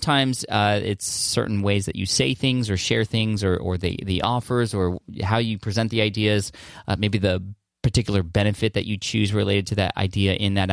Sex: male